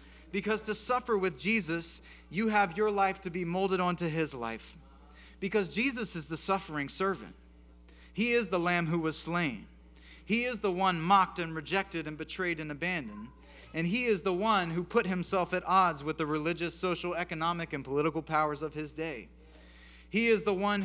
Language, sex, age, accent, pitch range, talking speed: English, male, 30-49, American, 160-200 Hz, 185 wpm